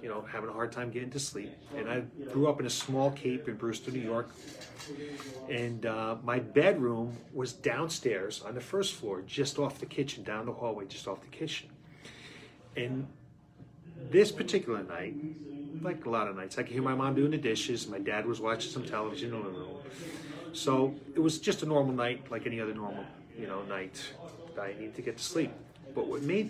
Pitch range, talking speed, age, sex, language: 120-150 Hz, 205 wpm, 30-49, male, English